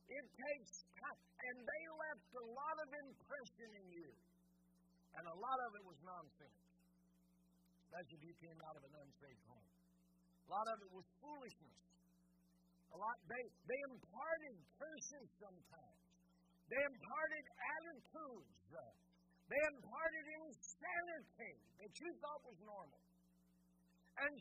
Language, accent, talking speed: English, American, 130 wpm